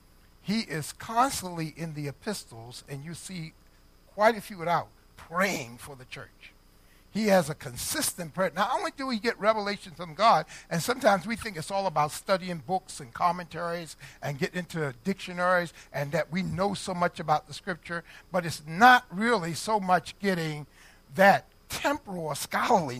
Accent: American